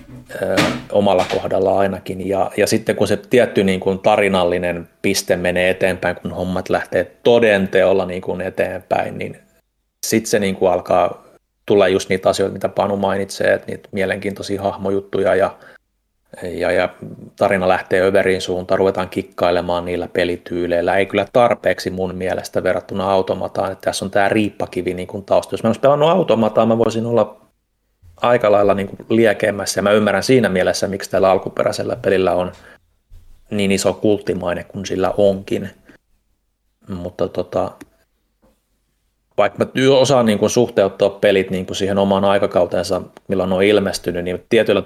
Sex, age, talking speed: male, 30-49, 150 wpm